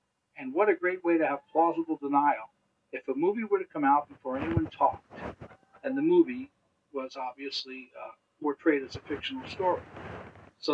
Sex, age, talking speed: male, 60-79, 175 wpm